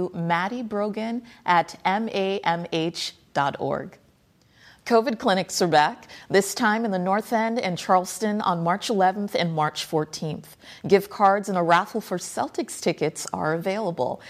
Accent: American